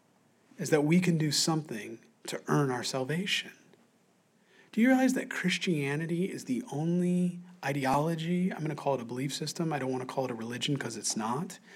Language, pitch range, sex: English, 145-210 Hz, male